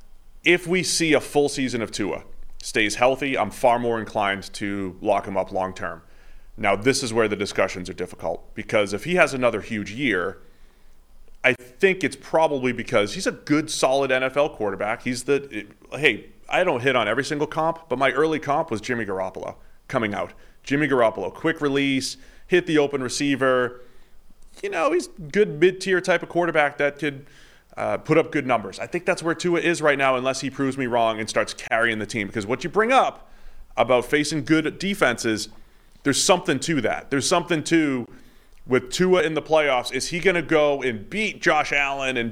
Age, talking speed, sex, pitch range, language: 30-49, 195 wpm, male, 125-160 Hz, English